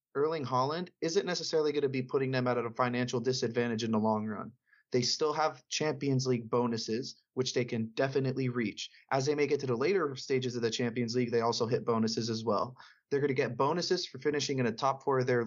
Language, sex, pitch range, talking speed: English, male, 115-140 Hz, 230 wpm